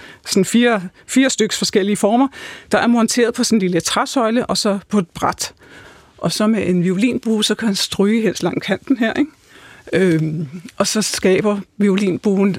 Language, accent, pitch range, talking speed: Danish, native, 180-215 Hz, 180 wpm